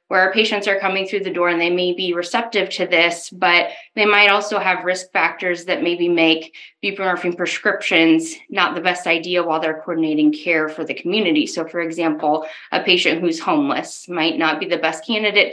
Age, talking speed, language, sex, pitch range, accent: 20-39, 195 wpm, English, female, 165-205 Hz, American